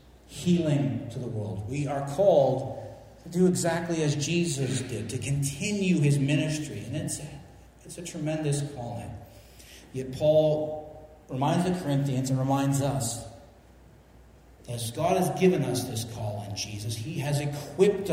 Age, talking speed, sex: 40-59, 140 wpm, male